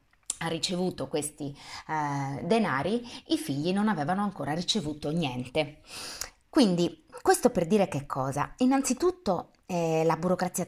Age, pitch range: 30-49, 160-245 Hz